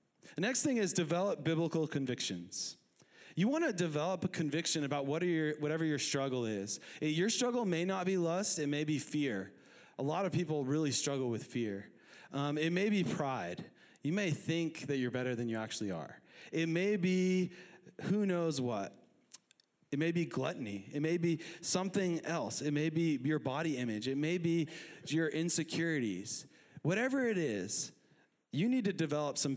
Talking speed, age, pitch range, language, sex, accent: 175 wpm, 30-49, 135-175 Hz, English, male, American